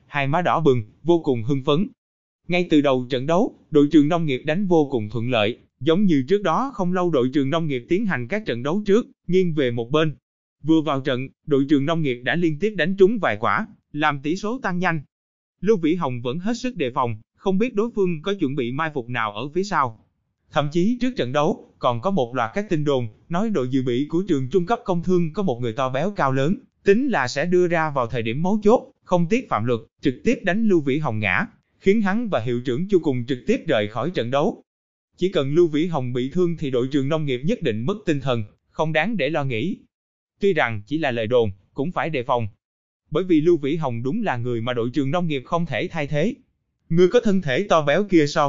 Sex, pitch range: male, 130-185 Hz